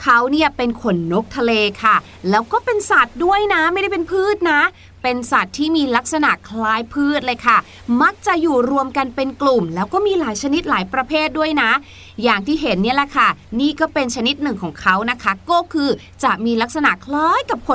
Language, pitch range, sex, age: Thai, 235-310 Hz, female, 30-49